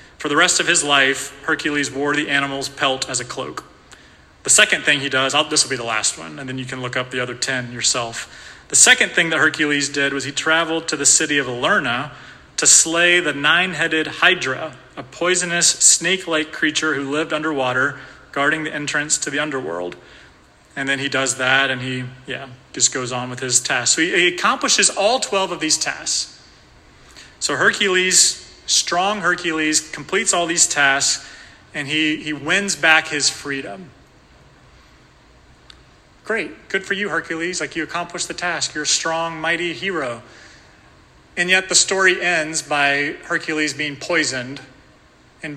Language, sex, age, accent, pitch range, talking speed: English, male, 30-49, American, 135-165 Hz, 170 wpm